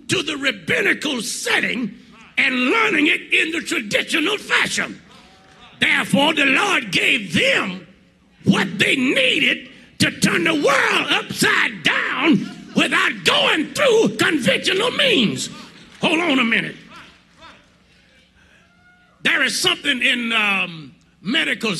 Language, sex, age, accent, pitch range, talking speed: English, male, 50-69, American, 195-275 Hz, 110 wpm